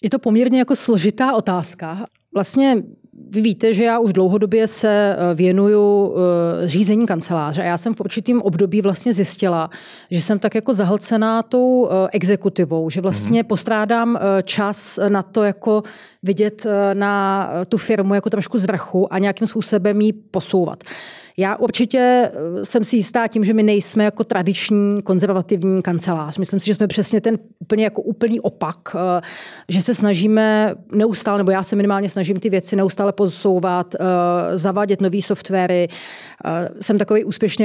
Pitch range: 185-220 Hz